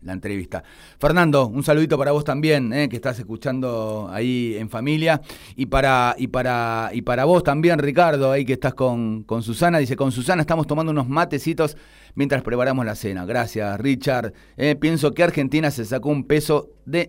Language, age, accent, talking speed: Spanish, 30-49, Argentinian, 185 wpm